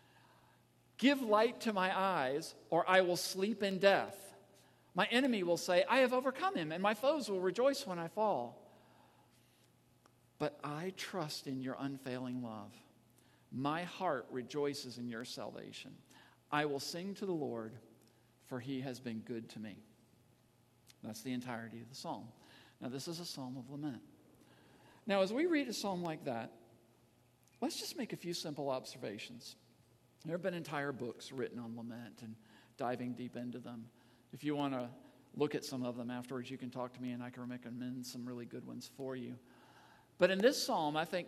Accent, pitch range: American, 120-180 Hz